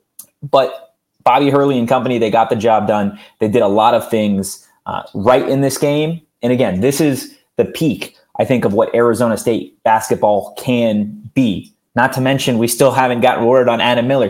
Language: English